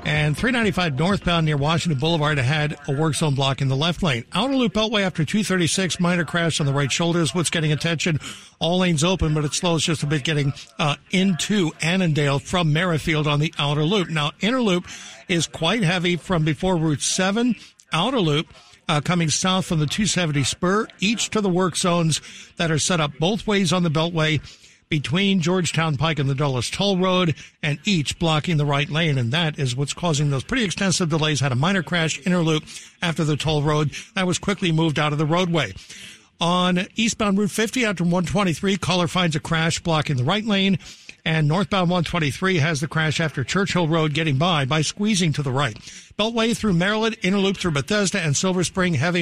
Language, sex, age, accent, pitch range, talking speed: English, male, 60-79, American, 150-185 Hz, 195 wpm